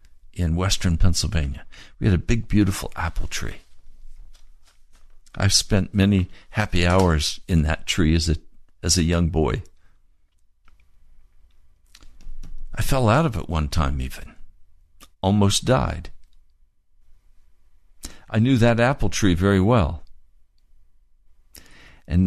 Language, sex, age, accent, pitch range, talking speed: English, male, 60-79, American, 65-90 Hz, 110 wpm